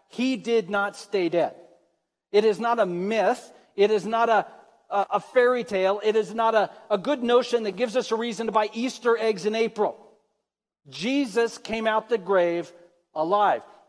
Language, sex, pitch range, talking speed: English, male, 160-220 Hz, 175 wpm